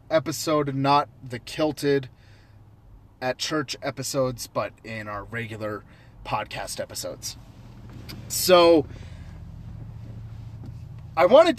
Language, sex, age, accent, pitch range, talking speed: English, male, 30-49, American, 105-145 Hz, 85 wpm